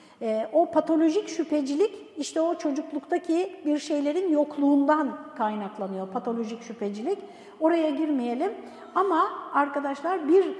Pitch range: 255-355 Hz